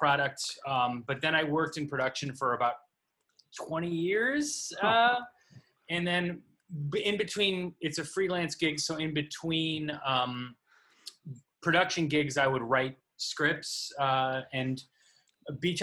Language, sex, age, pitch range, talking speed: English, male, 20-39, 135-165 Hz, 130 wpm